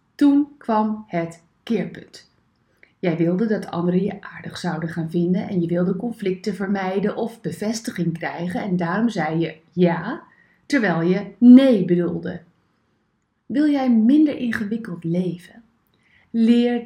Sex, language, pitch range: female, Dutch, 185-260 Hz